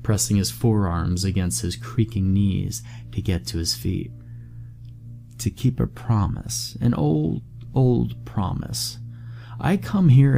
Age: 30-49